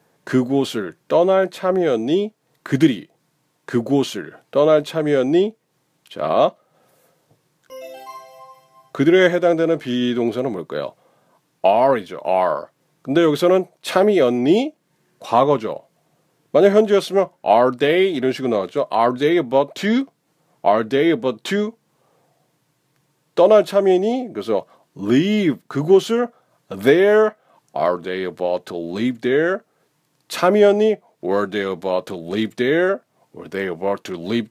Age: 40-59